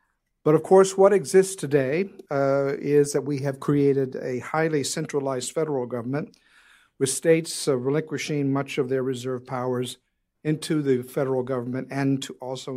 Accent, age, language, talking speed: American, 50-69, English, 155 wpm